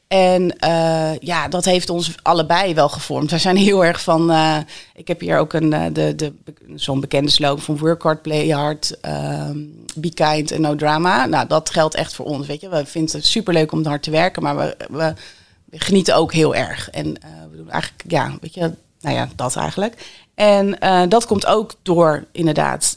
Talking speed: 195 wpm